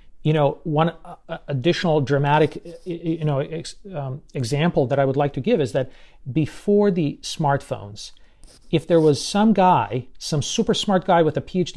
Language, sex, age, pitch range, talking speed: English, male, 40-59, 140-175 Hz, 175 wpm